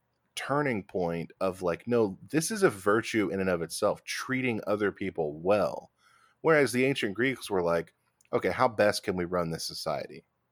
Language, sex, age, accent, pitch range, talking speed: English, male, 20-39, American, 95-130 Hz, 175 wpm